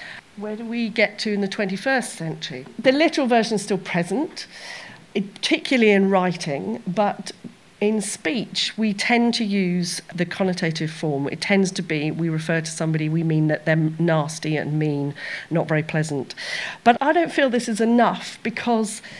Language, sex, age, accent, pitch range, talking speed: English, female, 40-59, British, 170-230 Hz, 170 wpm